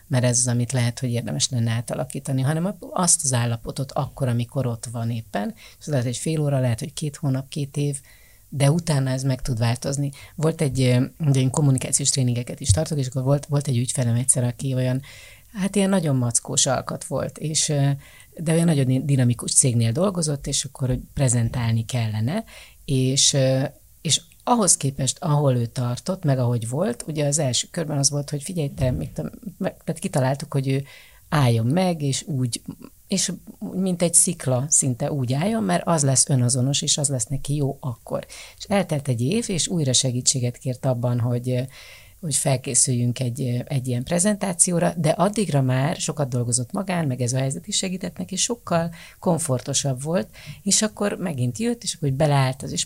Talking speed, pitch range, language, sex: 175 wpm, 125-165 Hz, Hungarian, female